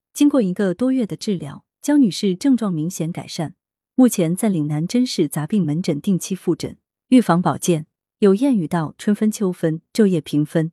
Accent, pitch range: native, 170-250 Hz